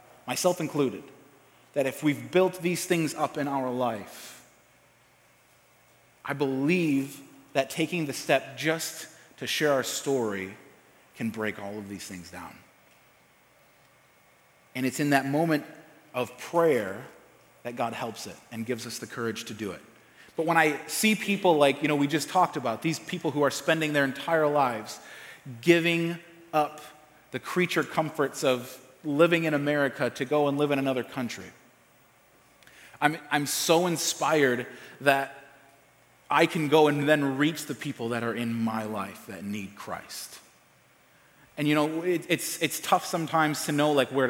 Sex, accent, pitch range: male, American, 125-160 Hz